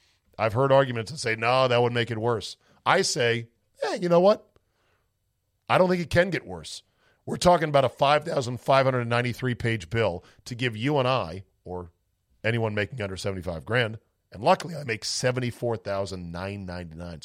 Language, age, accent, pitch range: English, 40-59, American, 100-135 Hz